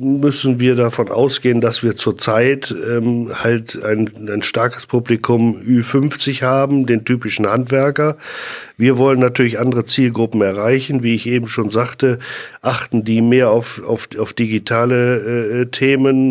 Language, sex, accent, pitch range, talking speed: German, male, German, 120-135 Hz, 135 wpm